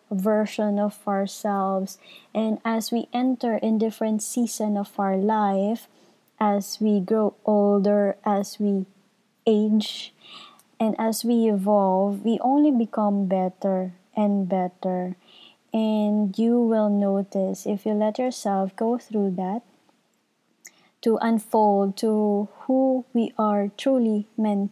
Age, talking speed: 20-39, 120 wpm